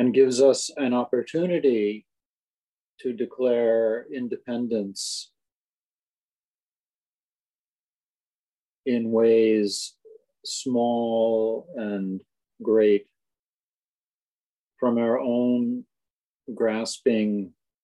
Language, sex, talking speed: English, male, 55 wpm